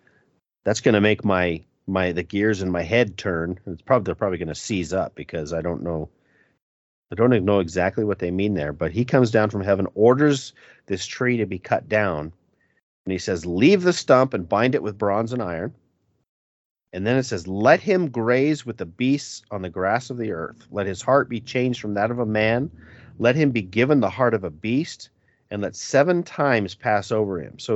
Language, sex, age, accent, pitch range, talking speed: English, male, 40-59, American, 90-120 Hz, 220 wpm